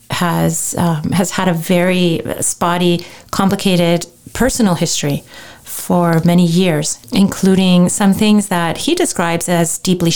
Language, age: English, 40-59